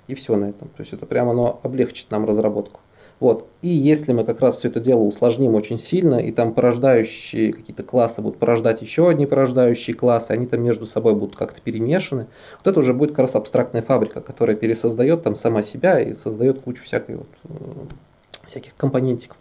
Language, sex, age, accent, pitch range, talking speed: Russian, male, 20-39, native, 110-145 Hz, 190 wpm